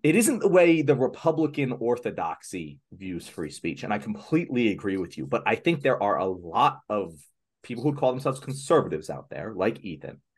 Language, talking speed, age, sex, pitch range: English, 190 wpm, 30-49, male, 105-140 Hz